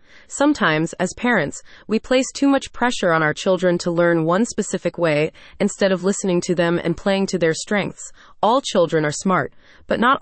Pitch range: 170-235 Hz